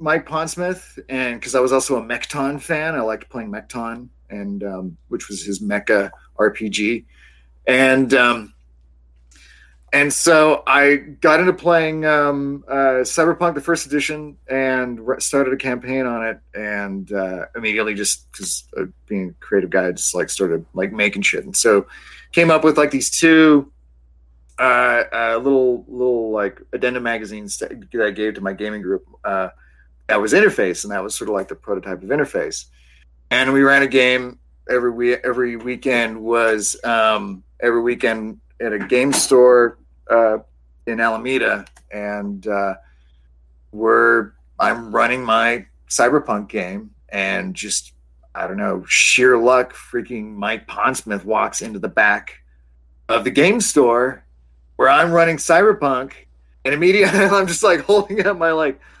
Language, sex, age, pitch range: English, male, 30-49, 100-135 Hz